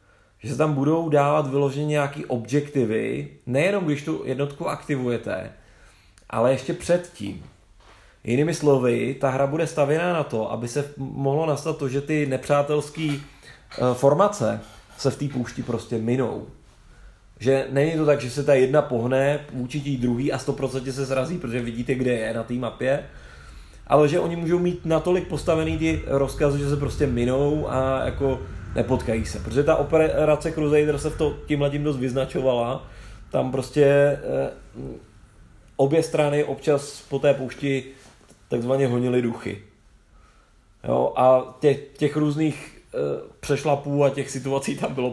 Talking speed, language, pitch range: 150 wpm, Czech, 120-145 Hz